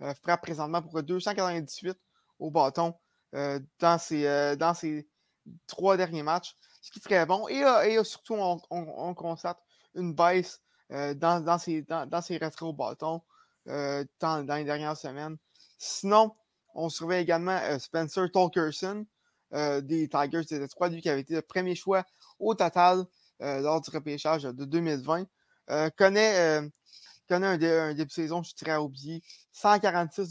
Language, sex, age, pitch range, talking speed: French, male, 20-39, 150-180 Hz, 175 wpm